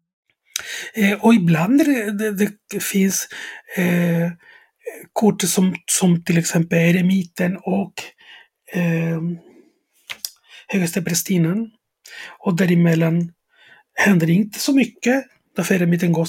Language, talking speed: Swedish, 95 wpm